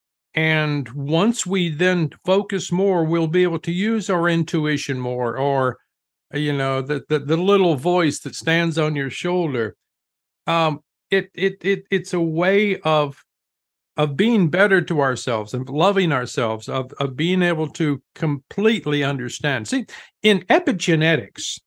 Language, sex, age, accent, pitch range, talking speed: English, male, 50-69, American, 145-185 Hz, 145 wpm